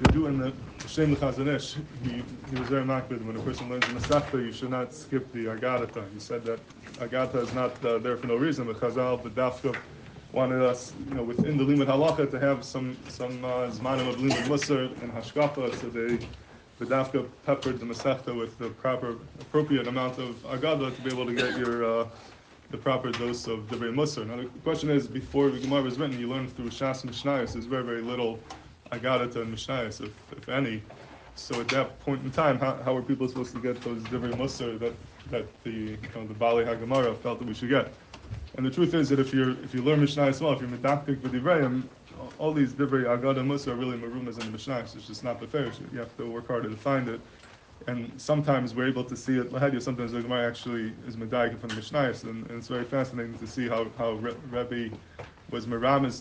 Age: 20-39